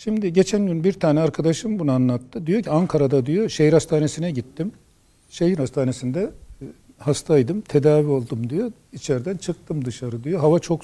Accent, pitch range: native, 145-210 Hz